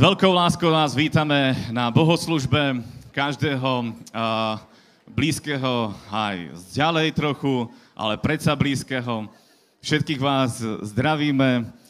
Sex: male